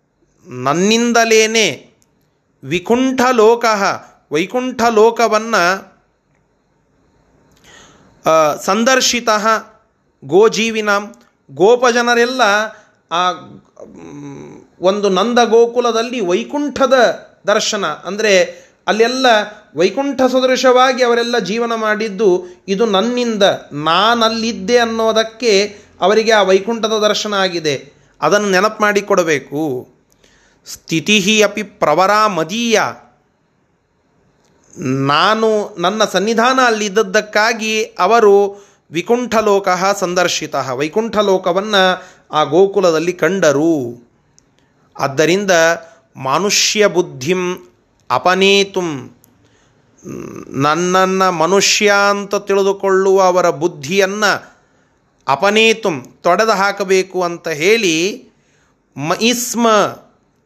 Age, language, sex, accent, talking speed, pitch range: 30-49, Kannada, male, native, 65 wpm, 180-225 Hz